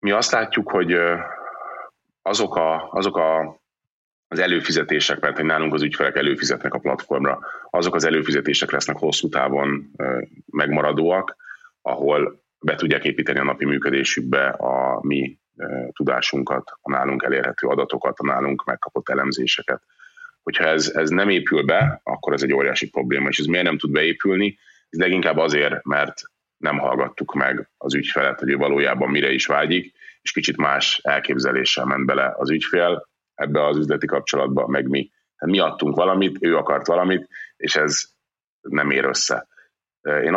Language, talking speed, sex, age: Hungarian, 150 wpm, male, 20-39